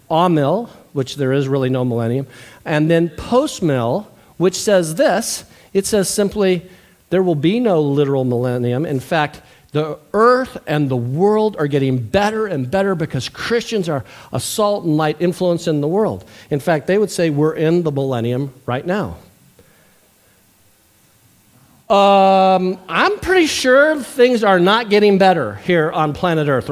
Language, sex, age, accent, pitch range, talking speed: English, male, 50-69, American, 140-195 Hz, 155 wpm